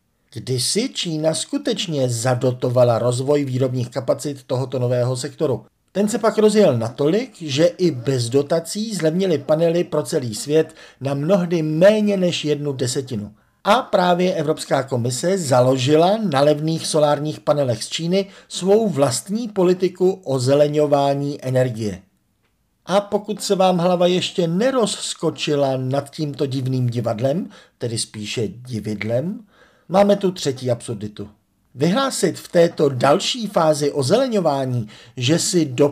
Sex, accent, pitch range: male, native, 125-175 Hz